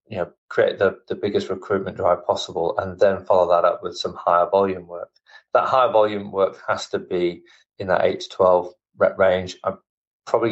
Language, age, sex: English, 20-39, male